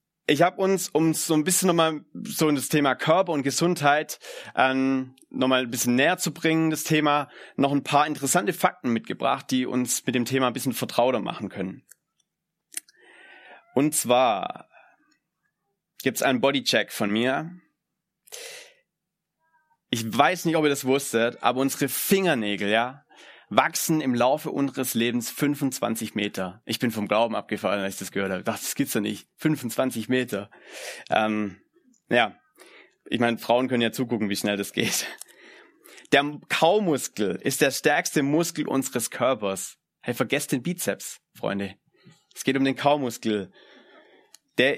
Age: 30-49